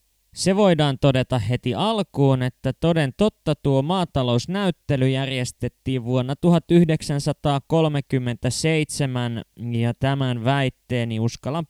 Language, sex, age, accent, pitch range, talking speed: Finnish, male, 20-39, native, 120-150 Hz, 85 wpm